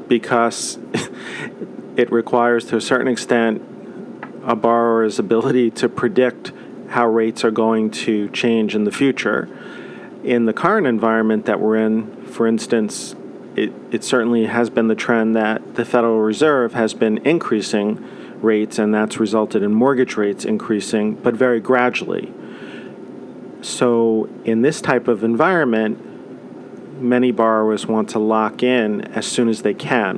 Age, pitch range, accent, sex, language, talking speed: 40-59, 110-125 Hz, American, male, English, 145 wpm